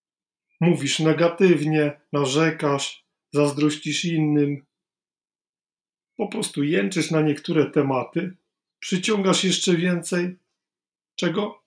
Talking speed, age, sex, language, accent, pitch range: 75 wpm, 40-59, male, Polish, native, 150-180 Hz